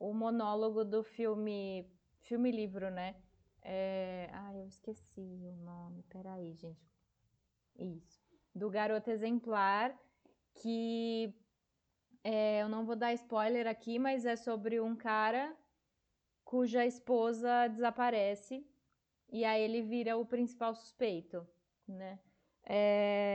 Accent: Brazilian